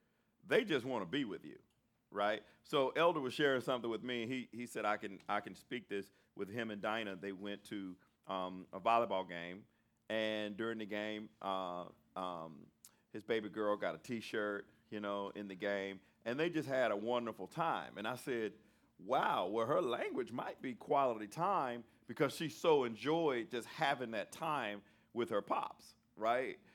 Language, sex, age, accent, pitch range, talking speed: English, male, 40-59, American, 105-160 Hz, 180 wpm